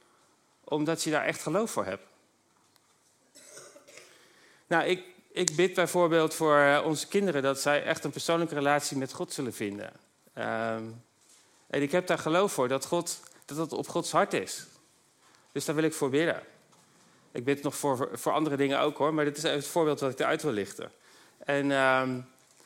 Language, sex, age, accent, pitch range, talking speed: Dutch, male, 40-59, Dutch, 130-165 Hz, 180 wpm